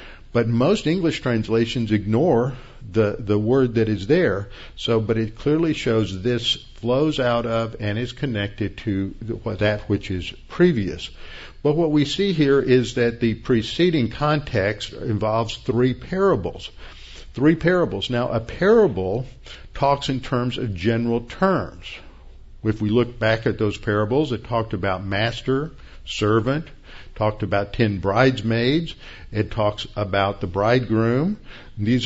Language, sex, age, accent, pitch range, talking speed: English, male, 50-69, American, 105-125 Hz, 140 wpm